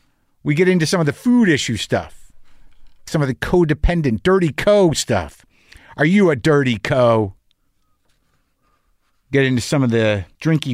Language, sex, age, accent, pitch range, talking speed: English, male, 50-69, American, 110-165 Hz, 150 wpm